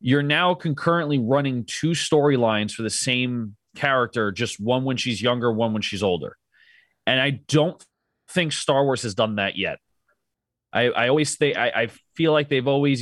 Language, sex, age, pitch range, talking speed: English, male, 30-49, 120-155 Hz, 180 wpm